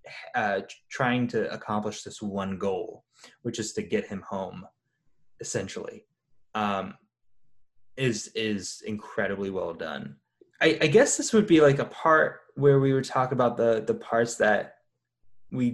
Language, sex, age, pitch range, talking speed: English, male, 20-39, 105-140 Hz, 150 wpm